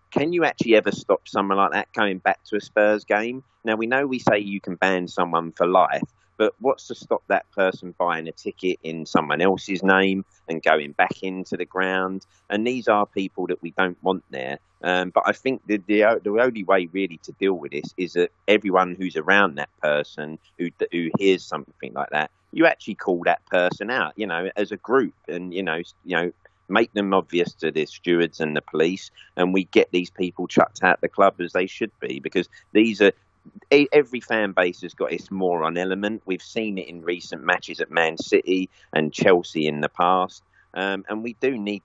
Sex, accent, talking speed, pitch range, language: male, British, 215 wpm, 90-105 Hz, English